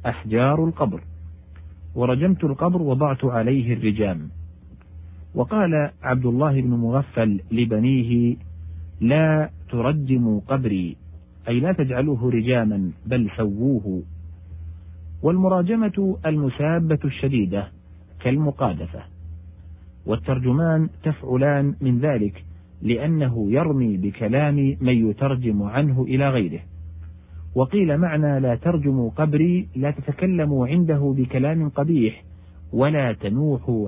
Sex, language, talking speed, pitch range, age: male, Arabic, 90 wpm, 85-140 Hz, 50-69